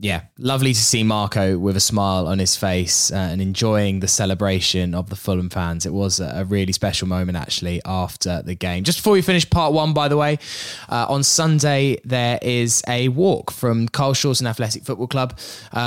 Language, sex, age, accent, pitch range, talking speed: English, male, 10-29, British, 105-135 Hz, 195 wpm